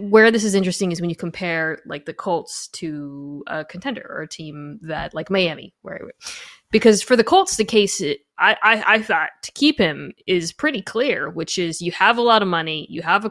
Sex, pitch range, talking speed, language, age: female, 170-235 Hz, 220 wpm, English, 20-39